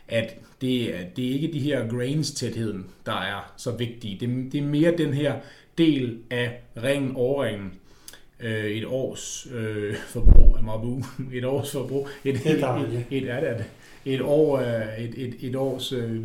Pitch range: 115-140 Hz